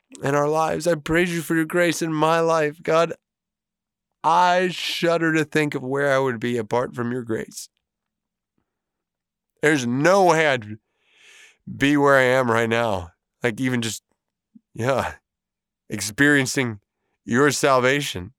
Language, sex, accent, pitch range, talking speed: English, male, American, 110-150 Hz, 140 wpm